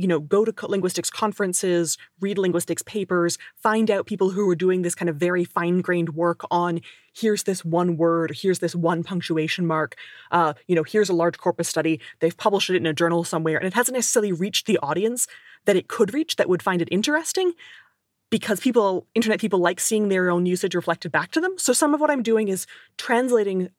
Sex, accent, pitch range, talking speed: female, American, 175-220 Hz, 210 wpm